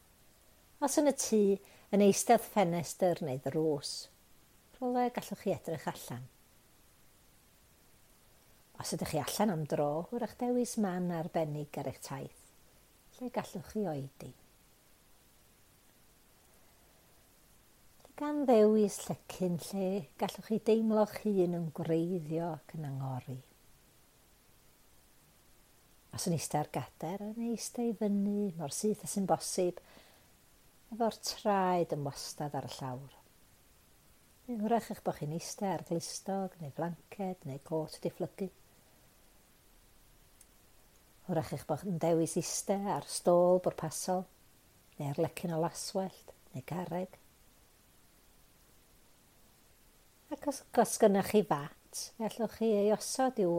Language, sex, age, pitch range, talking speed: English, female, 60-79, 155-210 Hz, 115 wpm